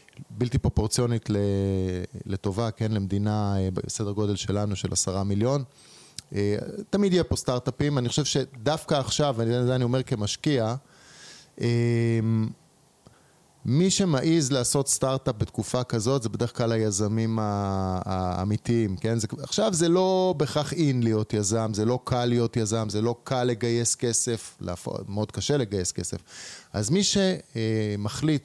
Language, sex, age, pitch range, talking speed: Hebrew, male, 20-39, 105-135 Hz, 130 wpm